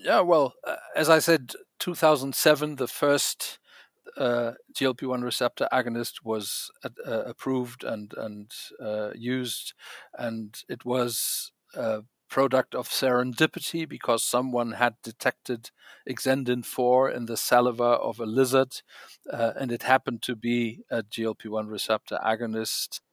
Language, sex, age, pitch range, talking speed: English, male, 50-69, 110-130 Hz, 125 wpm